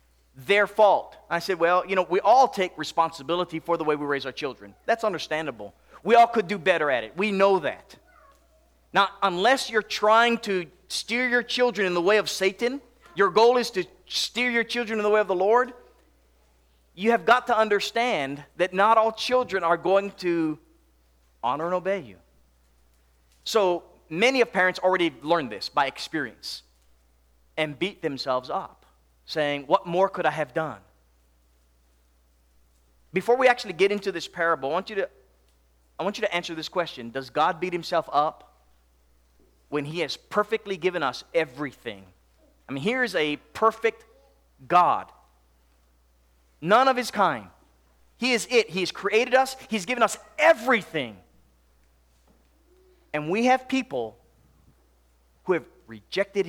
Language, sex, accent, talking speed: English, male, American, 155 wpm